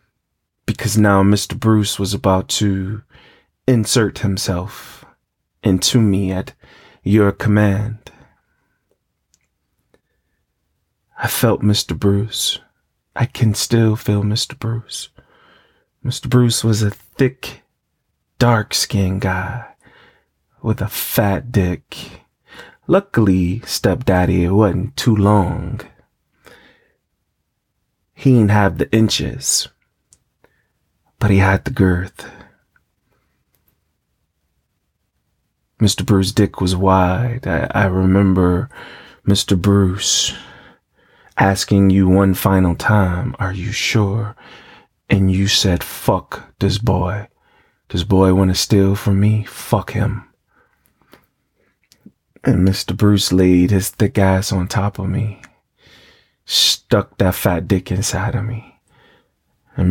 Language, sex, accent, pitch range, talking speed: English, male, American, 95-110 Hz, 105 wpm